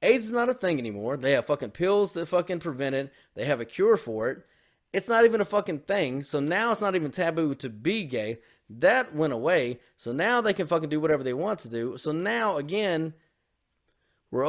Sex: male